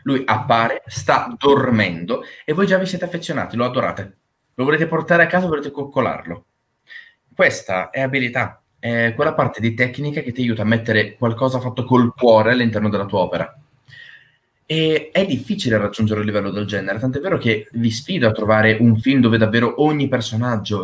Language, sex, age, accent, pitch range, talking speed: Italian, male, 20-39, native, 110-160 Hz, 175 wpm